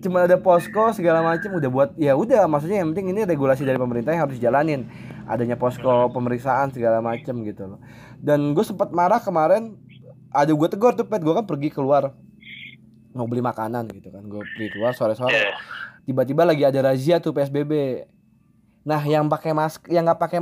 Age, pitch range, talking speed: 20-39, 130-185 Hz, 180 wpm